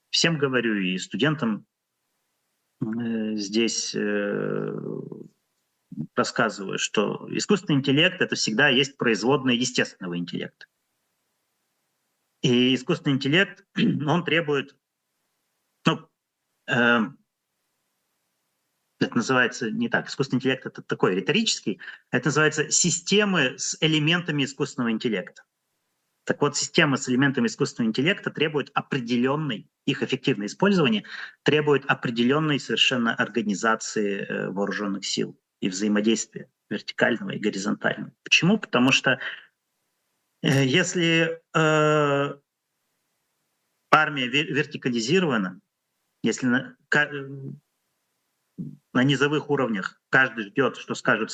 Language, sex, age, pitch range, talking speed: Russian, male, 30-49, 120-155 Hz, 95 wpm